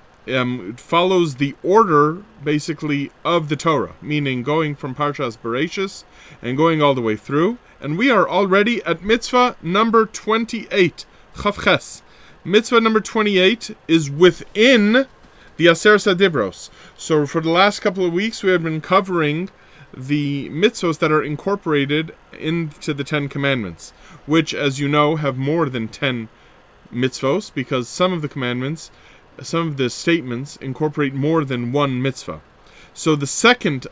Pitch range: 140-195 Hz